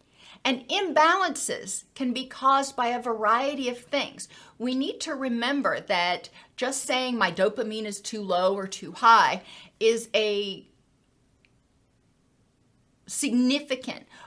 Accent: American